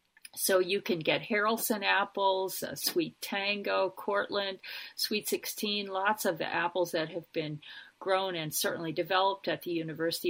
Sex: female